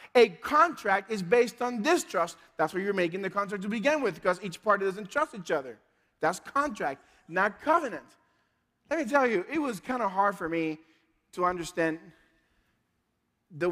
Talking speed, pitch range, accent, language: 175 wpm, 165-215 Hz, American, English